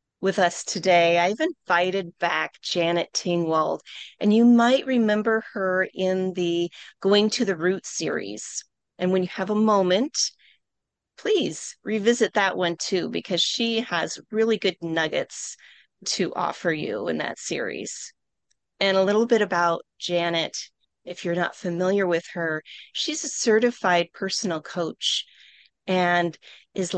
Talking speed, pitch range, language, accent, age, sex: 140 wpm, 175-215 Hz, English, American, 30-49, female